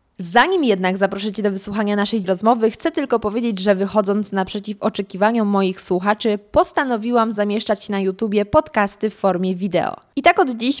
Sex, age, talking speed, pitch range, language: female, 20-39, 160 wpm, 195-235 Hz, Polish